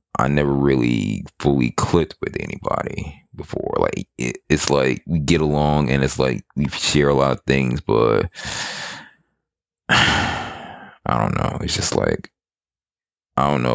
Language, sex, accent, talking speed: English, male, American, 145 wpm